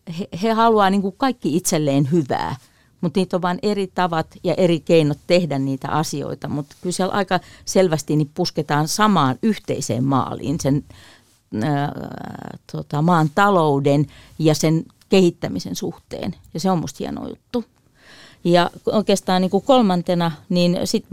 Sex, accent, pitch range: female, native, 150-185 Hz